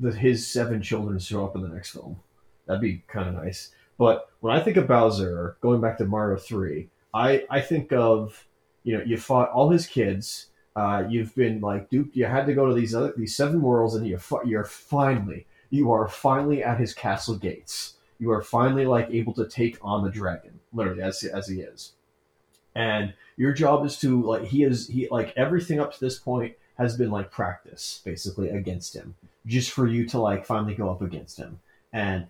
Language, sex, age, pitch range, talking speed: English, male, 30-49, 95-120 Hz, 205 wpm